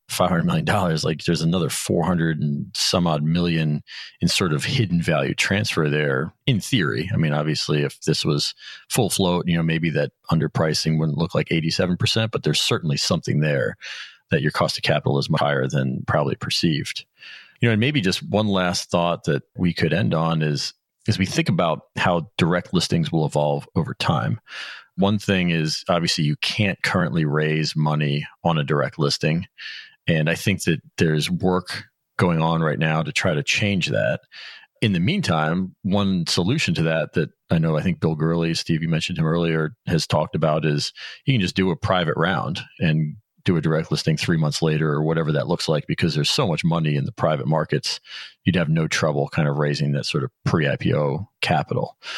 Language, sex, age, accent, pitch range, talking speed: English, male, 40-59, American, 75-90 Hz, 195 wpm